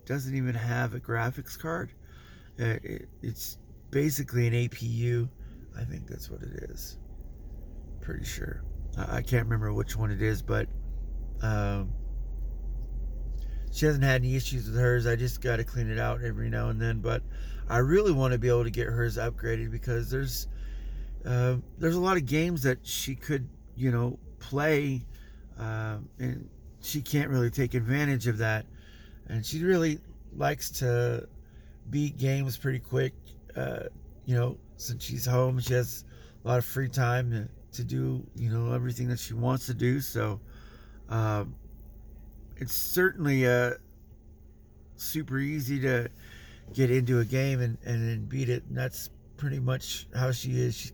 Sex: male